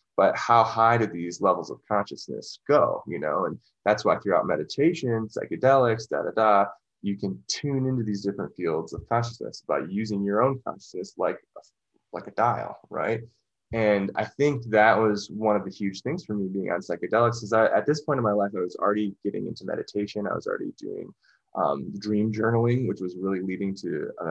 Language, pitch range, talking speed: English, 100-120 Hz, 200 wpm